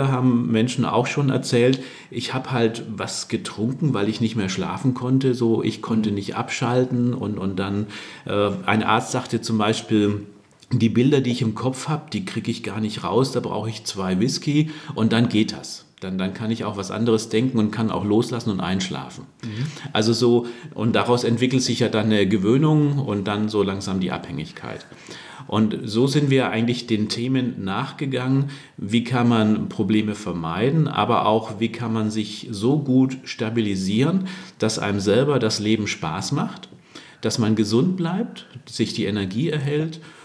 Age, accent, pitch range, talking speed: 40-59, German, 105-130 Hz, 175 wpm